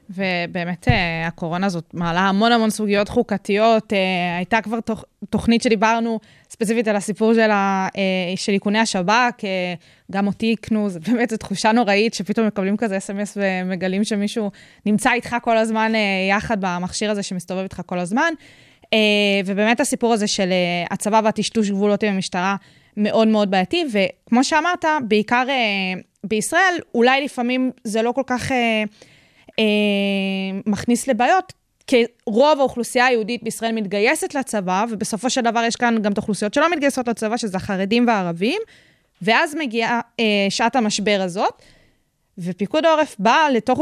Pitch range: 195-235 Hz